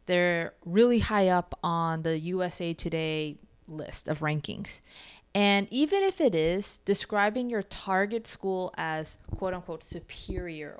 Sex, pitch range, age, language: female, 170-205 Hz, 20-39, English